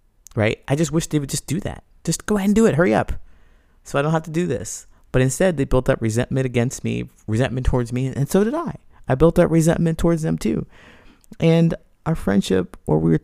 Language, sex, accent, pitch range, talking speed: English, male, American, 105-140 Hz, 235 wpm